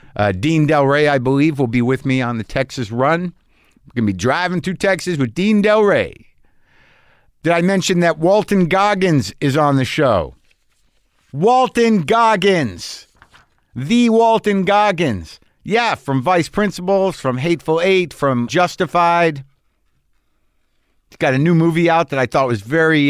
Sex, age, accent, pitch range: male, 50-69, American, 120-170 Hz